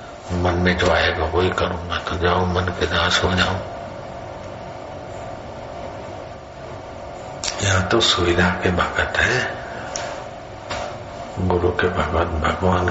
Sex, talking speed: male, 100 wpm